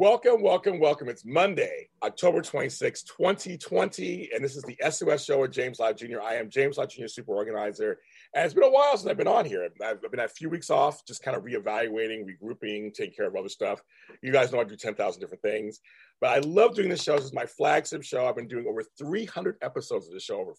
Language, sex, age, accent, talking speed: English, male, 40-59, American, 235 wpm